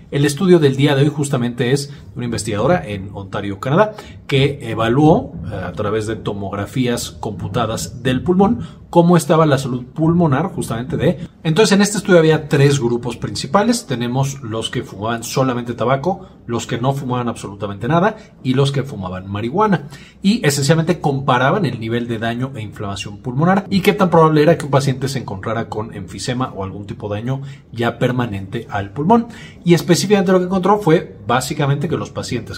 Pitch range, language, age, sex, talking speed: 110-160 Hz, Spanish, 30-49, male, 175 wpm